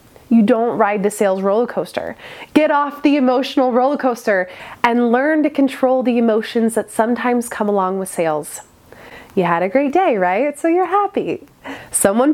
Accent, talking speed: American, 170 wpm